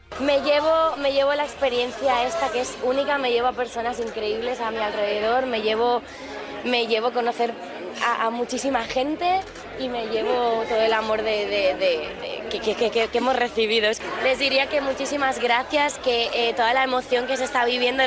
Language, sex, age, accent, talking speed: Spanish, female, 20-39, Spanish, 170 wpm